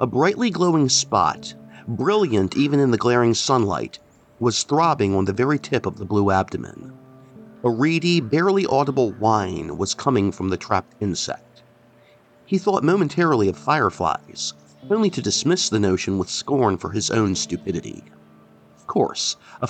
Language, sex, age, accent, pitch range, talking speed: English, male, 40-59, American, 95-145 Hz, 150 wpm